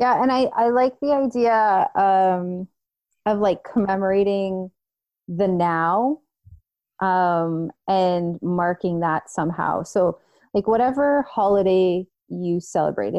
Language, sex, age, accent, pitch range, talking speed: English, female, 30-49, American, 175-225 Hz, 110 wpm